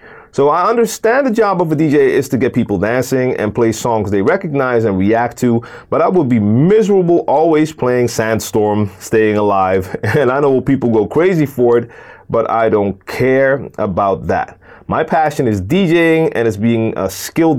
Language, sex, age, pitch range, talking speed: English, male, 30-49, 100-135 Hz, 185 wpm